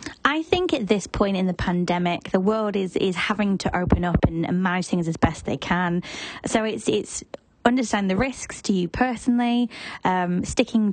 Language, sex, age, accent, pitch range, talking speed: English, female, 20-39, British, 170-230 Hz, 185 wpm